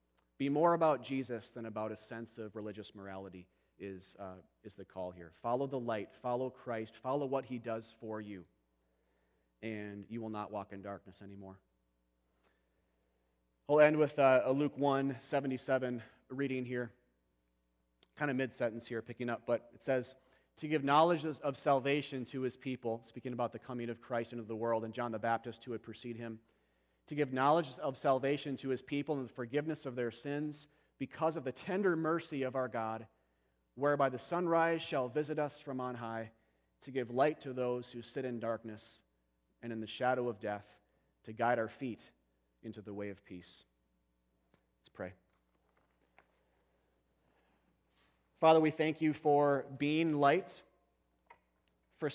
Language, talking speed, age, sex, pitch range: English, 165 wpm, 30-49, male, 95-140 Hz